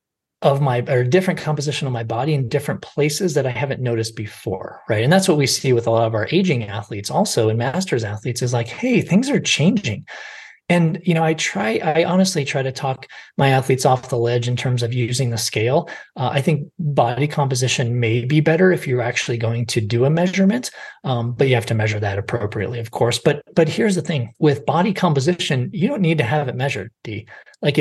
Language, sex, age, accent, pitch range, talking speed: English, male, 20-39, American, 120-170 Hz, 220 wpm